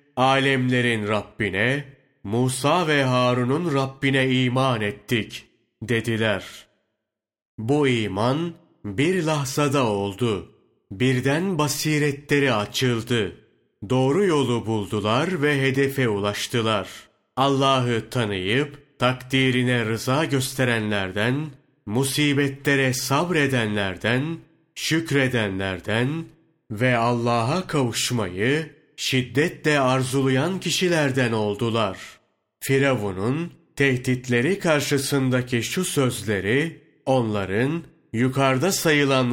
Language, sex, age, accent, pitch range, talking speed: Turkish, male, 30-49, native, 115-145 Hz, 70 wpm